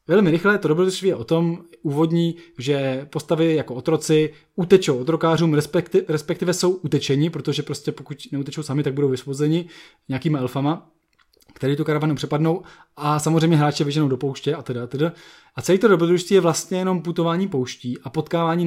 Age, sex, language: 20-39, male, Czech